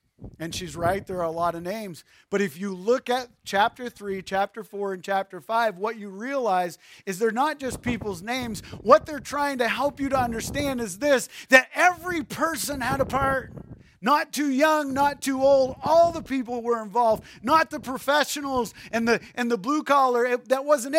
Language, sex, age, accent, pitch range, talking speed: English, male, 40-59, American, 195-270 Hz, 195 wpm